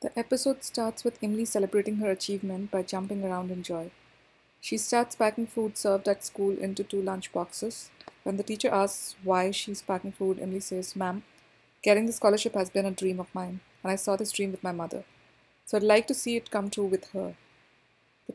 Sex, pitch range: female, 185-215 Hz